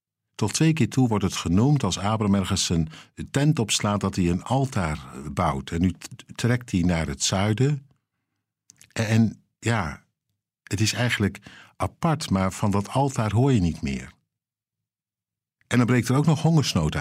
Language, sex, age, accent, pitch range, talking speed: Dutch, male, 50-69, Dutch, 95-125 Hz, 165 wpm